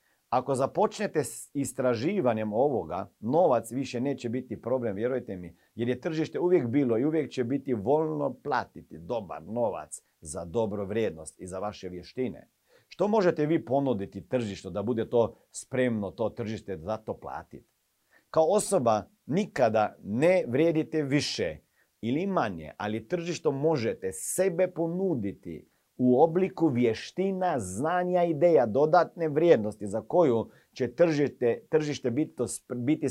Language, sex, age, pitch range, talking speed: Croatian, male, 50-69, 115-185 Hz, 130 wpm